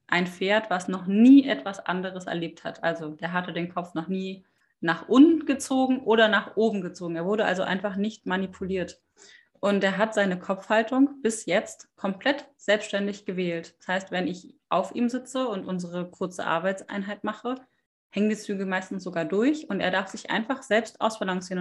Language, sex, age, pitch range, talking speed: German, female, 30-49, 185-225 Hz, 180 wpm